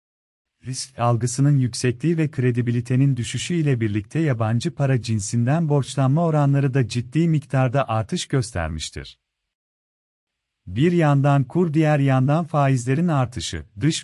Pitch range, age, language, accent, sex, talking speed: 120-150 Hz, 40-59, Turkish, native, male, 110 wpm